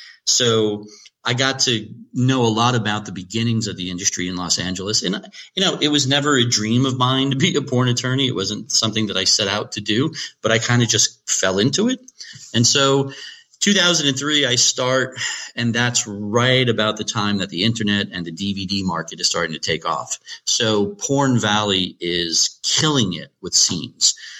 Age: 40-59